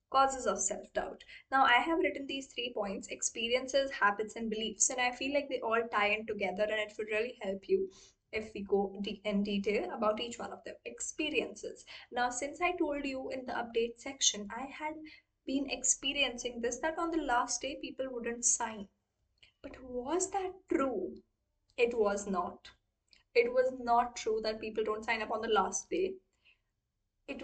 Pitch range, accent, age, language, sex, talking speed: 215-275 Hz, Indian, 10-29, English, female, 180 wpm